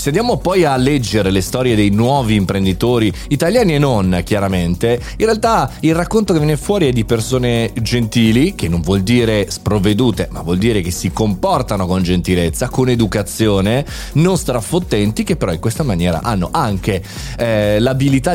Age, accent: 30-49, native